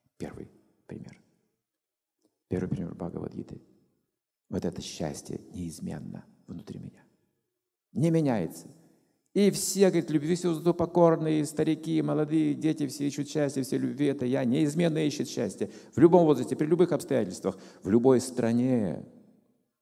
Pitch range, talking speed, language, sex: 125-175 Hz, 125 wpm, Russian, male